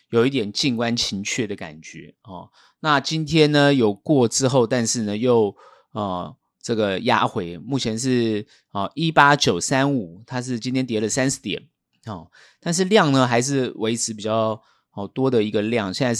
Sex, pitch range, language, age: male, 105-150 Hz, Chinese, 30-49